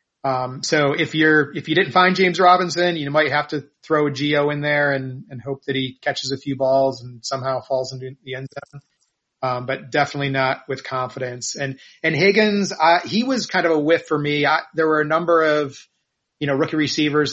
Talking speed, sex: 220 wpm, male